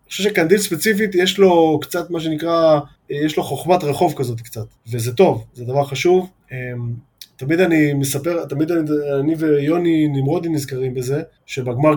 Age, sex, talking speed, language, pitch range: 20-39, male, 155 wpm, Hebrew, 140-175 Hz